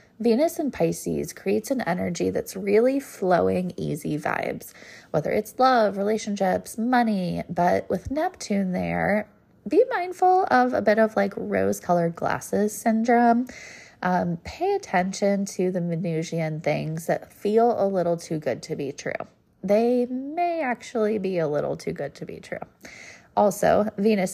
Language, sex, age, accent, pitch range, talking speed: English, female, 20-39, American, 170-235 Hz, 145 wpm